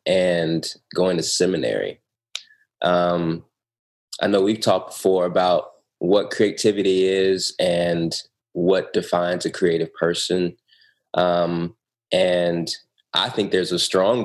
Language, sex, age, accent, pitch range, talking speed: English, male, 20-39, American, 90-115 Hz, 115 wpm